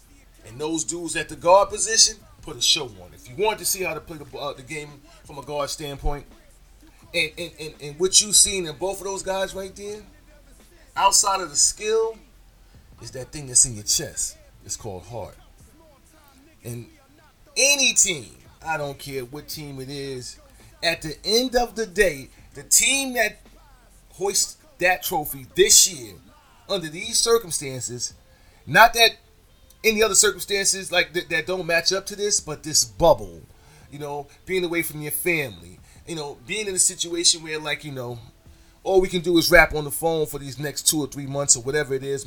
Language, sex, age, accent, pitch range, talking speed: English, male, 30-49, American, 130-190 Hz, 190 wpm